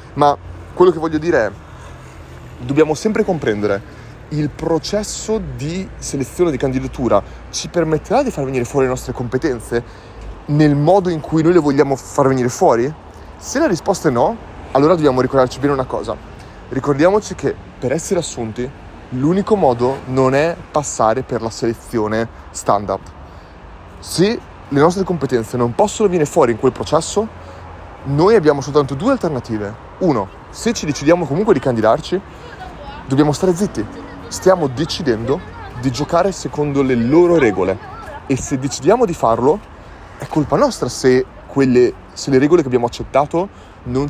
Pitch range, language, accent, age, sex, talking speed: 110-155 Hz, Italian, native, 30-49, male, 150 wpm